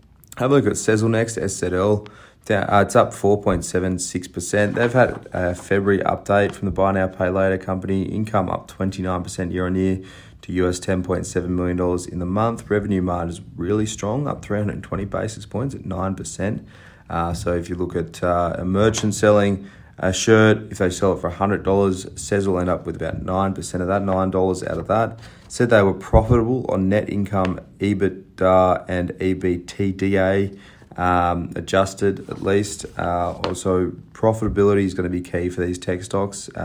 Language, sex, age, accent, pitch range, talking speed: English, male, 30-49, Australian, 90-100 Hz, 165 wpm